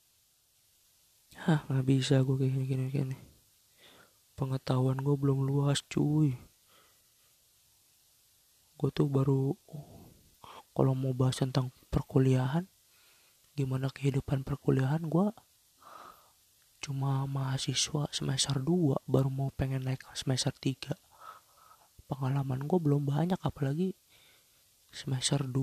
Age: 20-39